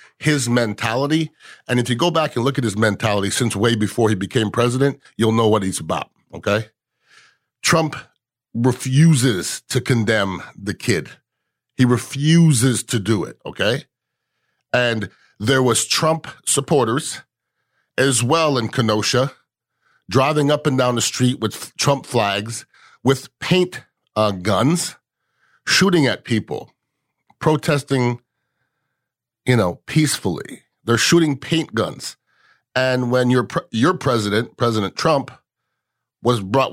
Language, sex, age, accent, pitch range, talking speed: English, male, 50-69, American, 110-140 Hz, 125 wpm